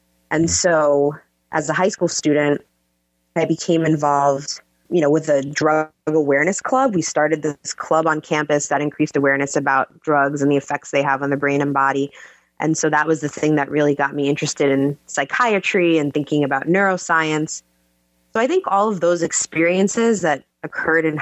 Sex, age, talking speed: female, 20-39, 185 wpm